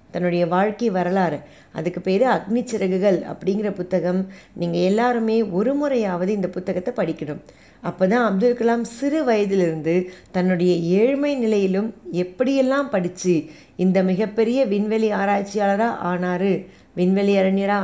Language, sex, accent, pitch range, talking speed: Tamil, female, native, 175-215 Hz, 110 wpm